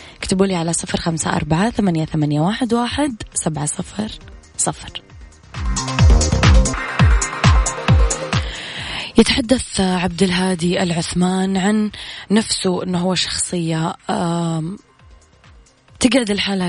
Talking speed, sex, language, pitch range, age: 85 wpm, female, Arabic, 155-185 Hz, 20-39